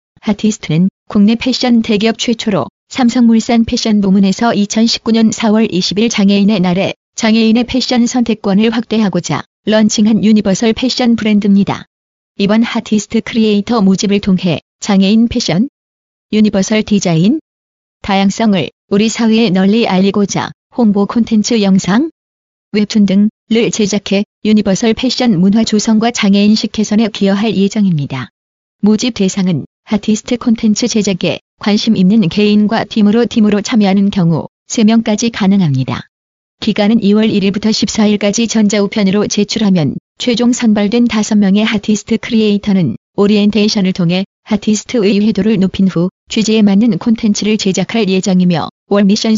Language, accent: Korean, native